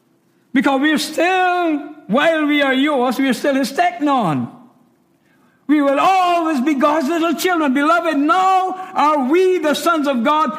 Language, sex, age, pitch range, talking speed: English, male, 60-79, 195-305 Hz, 145 wpm